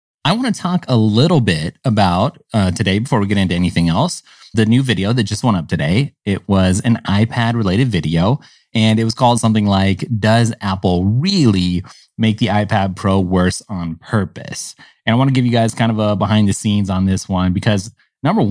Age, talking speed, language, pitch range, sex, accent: 30-49, 205 wpm, English, 95-120 Hz, male, American